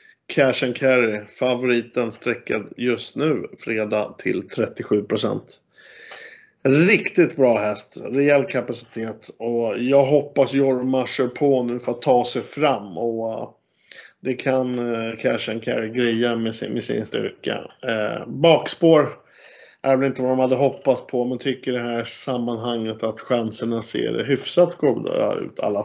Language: Swedish